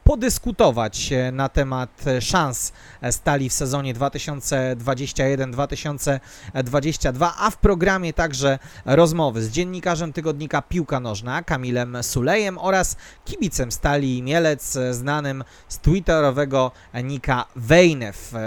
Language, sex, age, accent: Polish, male, 30-49, native